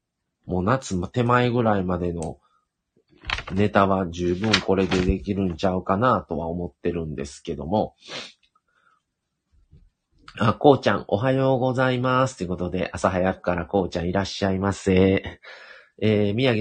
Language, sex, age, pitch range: Japanese, male, 40-59, 90-115 Hz